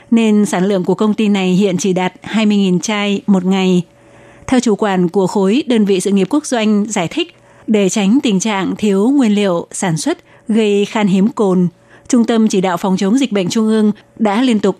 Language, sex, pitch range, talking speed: Vietnamese, female, 190-220 Hz, 215 wpm